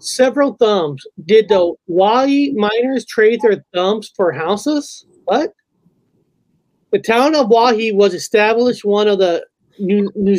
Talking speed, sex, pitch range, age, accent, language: 135 wpm, male, 200-245 Hz, 30-49, American, English